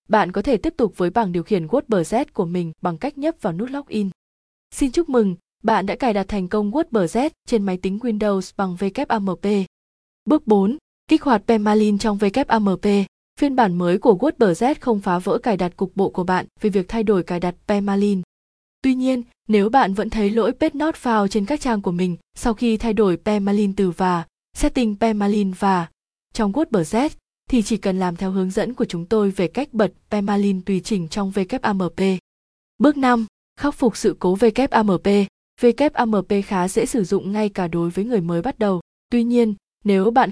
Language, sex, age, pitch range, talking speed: Vietnamese, female, 20-39, 190-235 Hz, 195 wpm